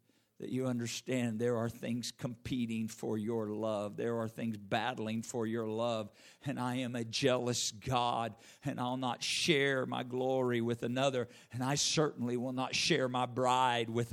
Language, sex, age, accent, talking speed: English, male, 50-69, American, 170 wpm